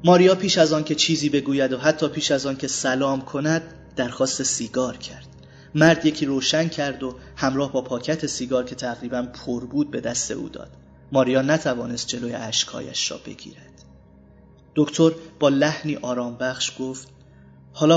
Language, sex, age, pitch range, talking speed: Persian, male, 30-49, 120-145 Hz, 155 wpm